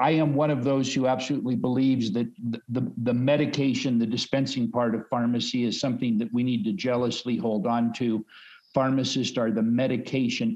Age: 50-69